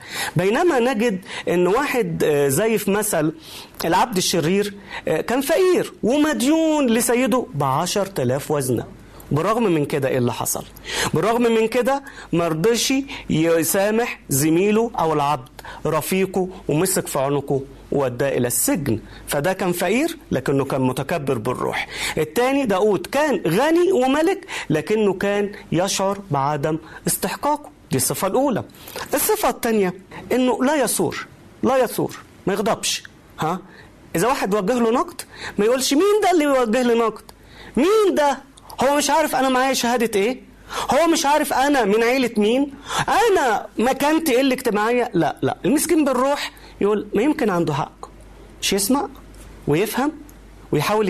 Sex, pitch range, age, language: male, 175-275 Hz, 40-59, Arabic